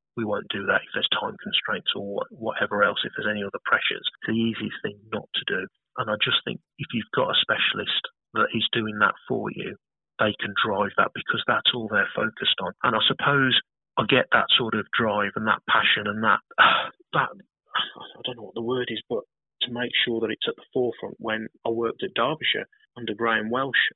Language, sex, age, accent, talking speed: English, male, 30-49, British, 220 wpm